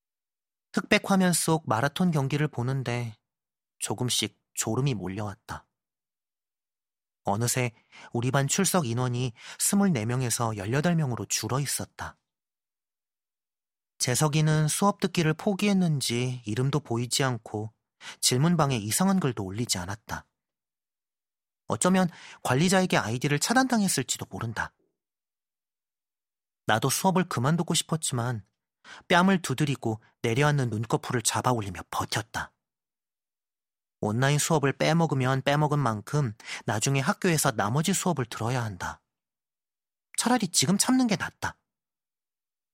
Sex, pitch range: male, 120-170 Hz